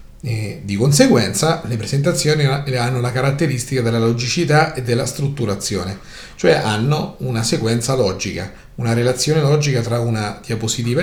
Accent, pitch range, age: native, 115-150 Hz, 40-59